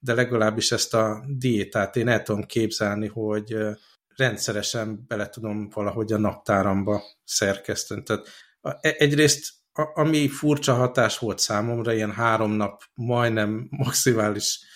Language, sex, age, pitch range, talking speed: Hungarian, male, 60-79, 110-130 Hz, 115 wpm